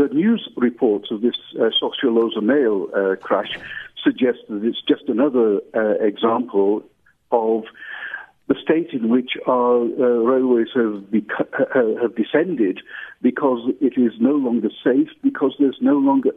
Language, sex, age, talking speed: English, male, 60-79, 145 wpm